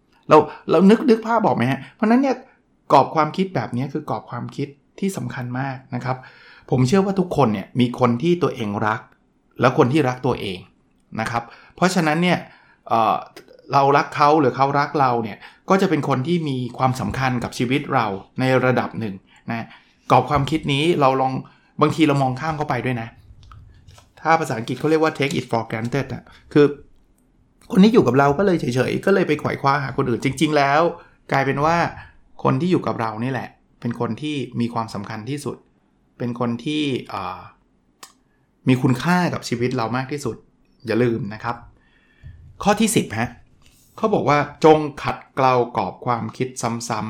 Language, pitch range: Thai, 120-155 Hz